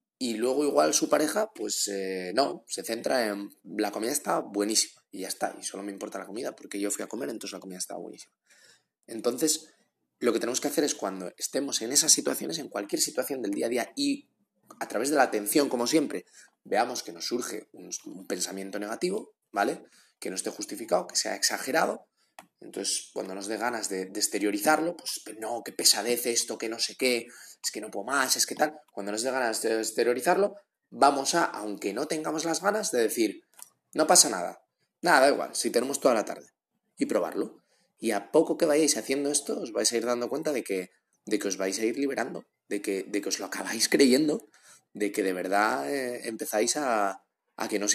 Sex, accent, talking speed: male, Spanish, 215 wpm